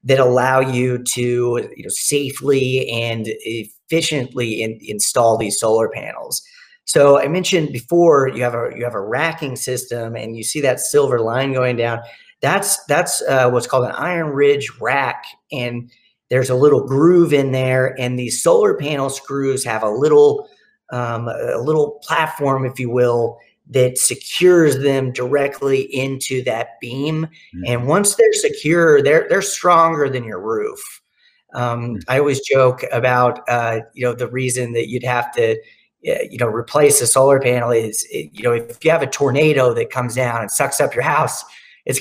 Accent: American